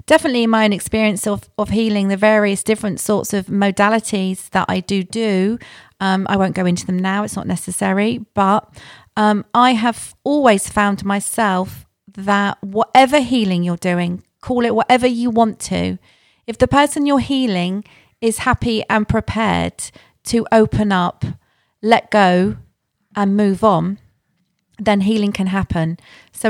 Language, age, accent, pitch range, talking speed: English, 40-59, British, 185-225 Hz, 155 wpm